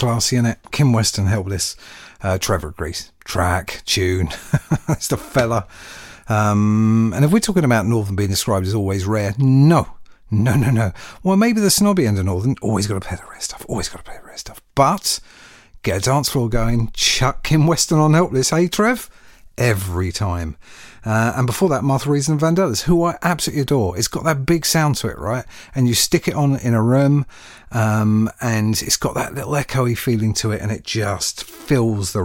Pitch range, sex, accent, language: 100-140 Hz, male, British, English